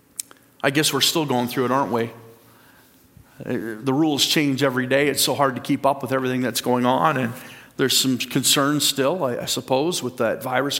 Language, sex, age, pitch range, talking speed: English, male, 40-59, 130-210 Hz, 195 wpm